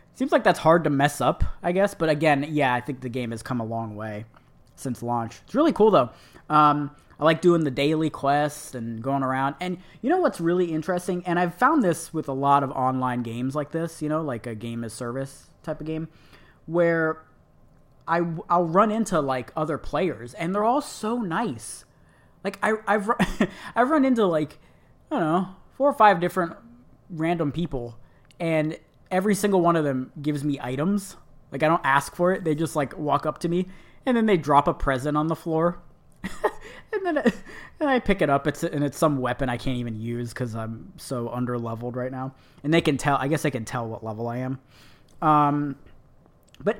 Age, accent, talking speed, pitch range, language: 20-39, American, 210 wpm, 135-180 Hz, English